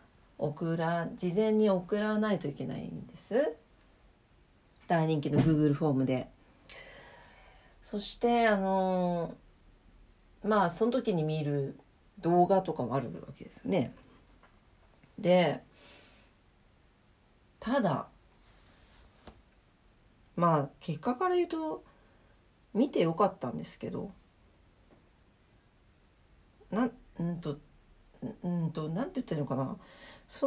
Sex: female